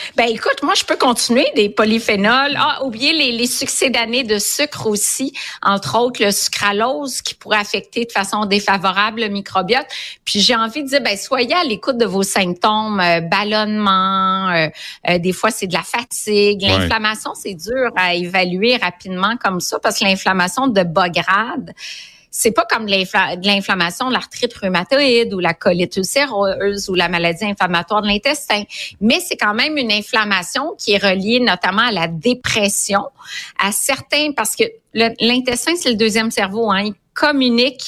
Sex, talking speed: female, 175 wpm